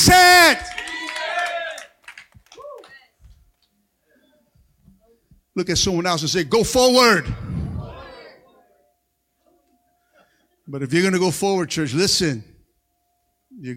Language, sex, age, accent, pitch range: English, male, 50-69, American, 135-185 Hz